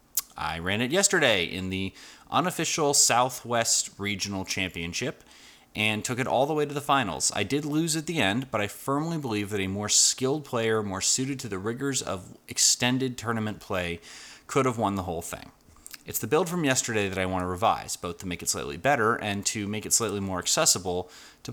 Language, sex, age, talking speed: English, male, 30-49, 205 wpm